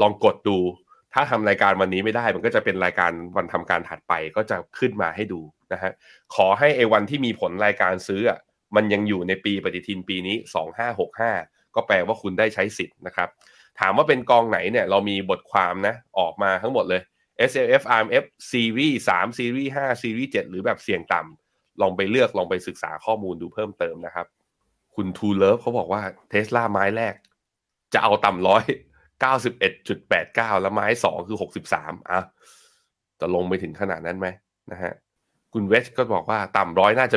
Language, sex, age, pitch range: Thai, male, 20-39, 90-115 Hz